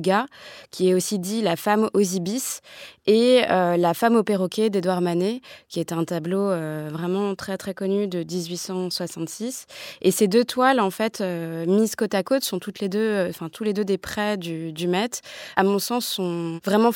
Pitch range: 185-220 Hz